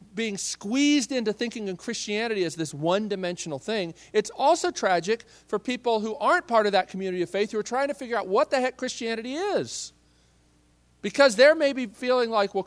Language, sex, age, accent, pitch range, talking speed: English, male, 40-59, American, 125-210 Hz, 190 wpm